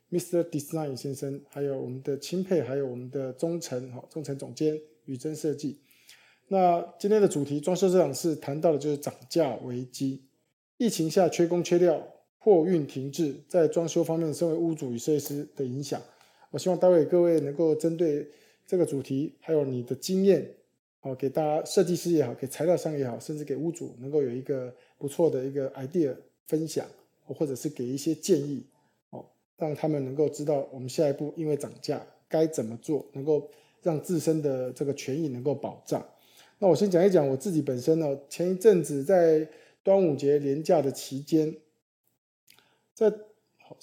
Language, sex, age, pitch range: Chinese, male, 20-39, 140-170 Hz